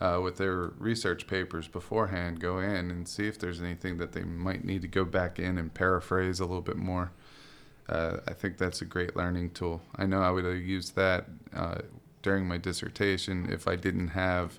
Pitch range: 90-110 Hz